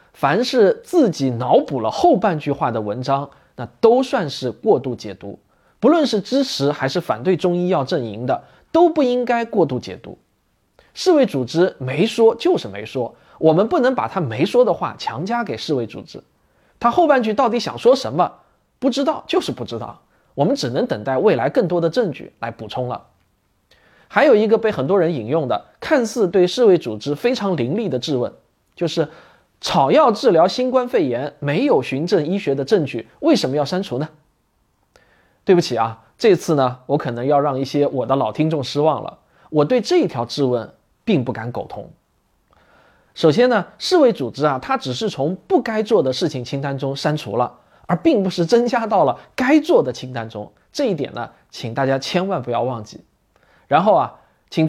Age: 20-39